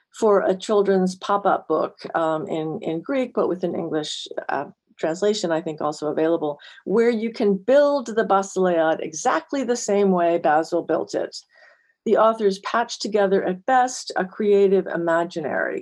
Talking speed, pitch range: 155 wpm, 180-230 Hz